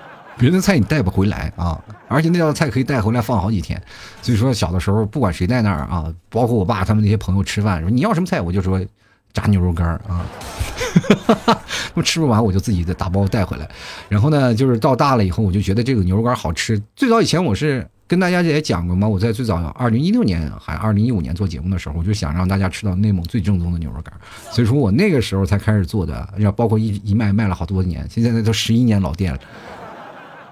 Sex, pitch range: male, 95-150 Hz